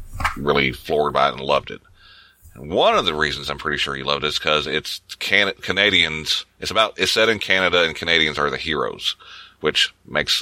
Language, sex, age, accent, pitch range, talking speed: English, male, 30-49, American, 75-95 Hz, 205 wpm